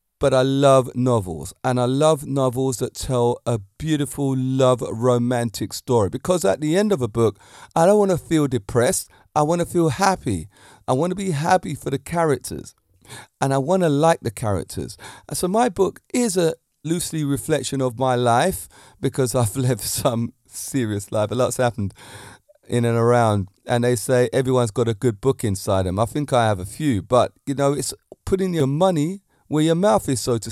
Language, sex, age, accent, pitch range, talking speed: English, male, 30-49, British, 115-150 Hz, 195 wpm